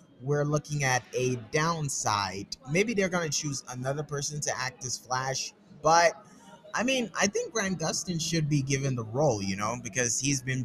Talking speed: 185 wpm